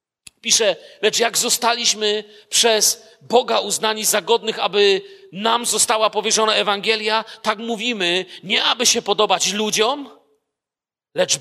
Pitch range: 170-220 Hz